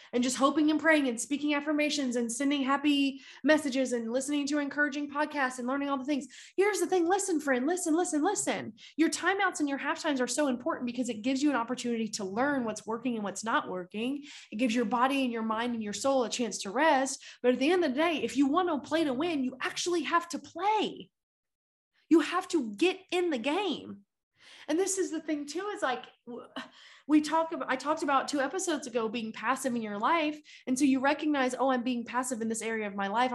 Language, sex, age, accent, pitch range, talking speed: English, female, 20-39, American, 225-295 Hz, 230 wpm